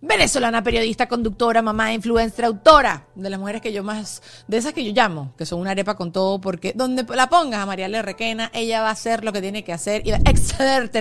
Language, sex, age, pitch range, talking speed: Spanish, female, 30-49, 200-255 Hz, 240 wpm